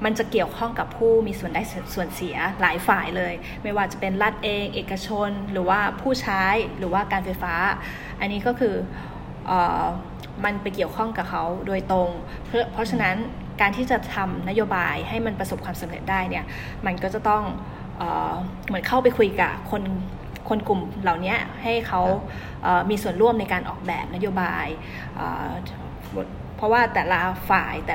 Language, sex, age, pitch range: Thai, female, 20-39, 190-225 Hz